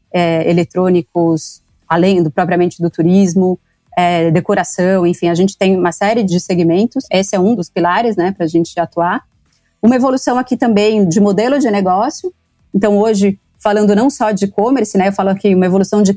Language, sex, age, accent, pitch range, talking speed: Portuguese, female, 30-49, Brazilian, 185-225 Hz, 165 wpm